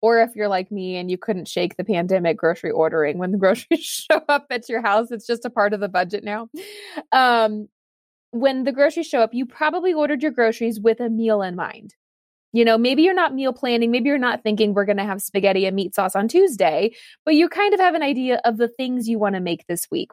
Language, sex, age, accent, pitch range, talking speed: English, female, 20-39, American, 200-260 Hz, 245 wpm